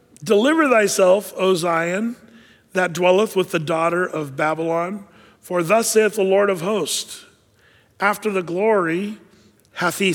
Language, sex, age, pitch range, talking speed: English, male, 50-69, 170-205 Hz, 135 wpm